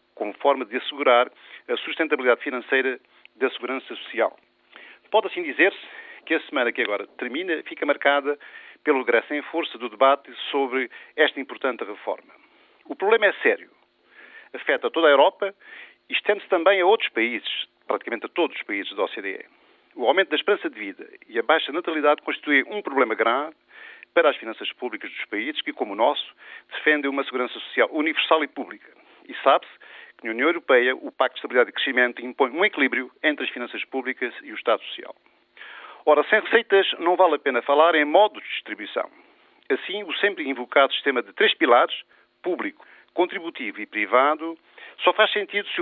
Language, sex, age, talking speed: Portuguese, male, 50-69, 175 wpm